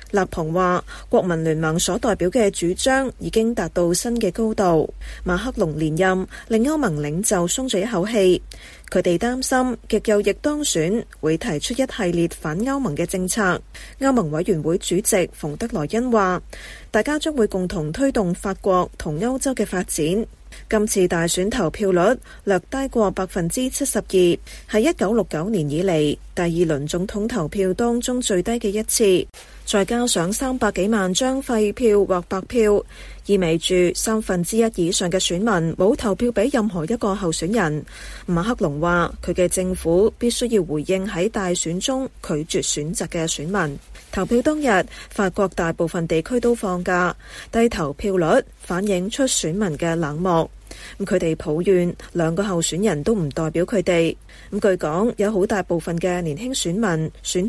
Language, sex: Chinese, female